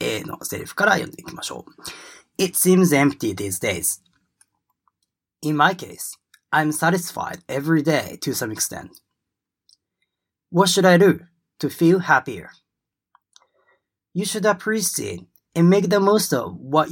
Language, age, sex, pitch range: Japanese, 30-49, male, 120-180 Hz